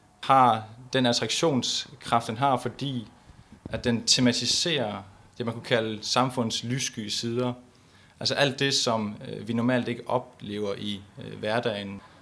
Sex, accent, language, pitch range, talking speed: male, native, Danish, 105-125 Hz, 125 wpm